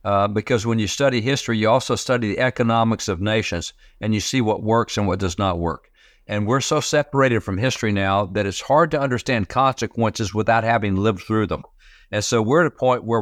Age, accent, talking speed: 60-79, American, 220 wpm